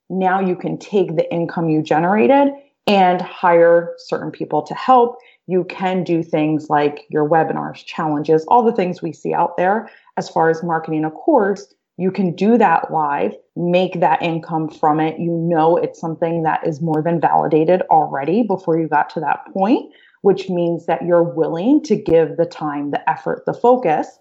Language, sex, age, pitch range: English, female, 20-39, 160-190 Hz